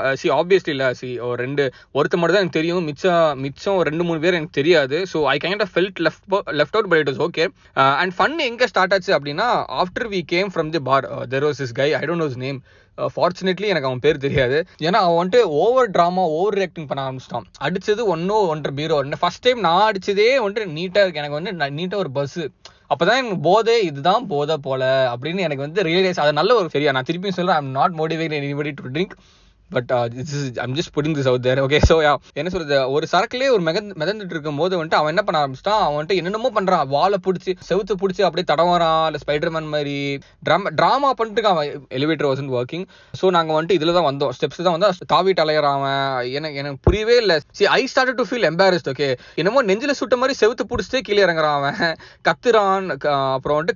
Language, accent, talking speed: Tamil, native, 215 wpm